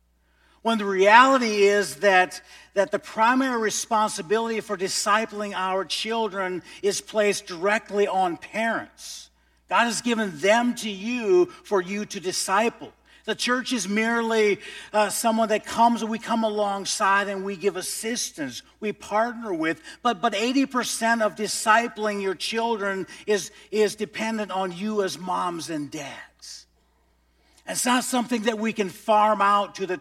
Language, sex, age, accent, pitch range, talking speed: English, male, 50-69, American, 165-220 Hz, 145 wpm